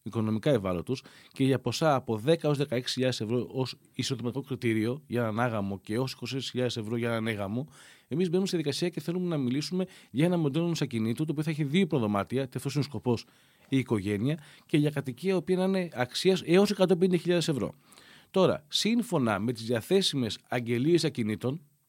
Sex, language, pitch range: male, Greek, 115-155 Hz